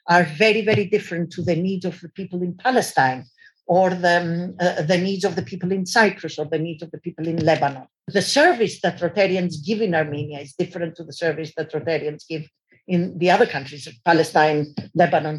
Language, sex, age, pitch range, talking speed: English, female, 50-69, 155-190 Hz, 205 wpm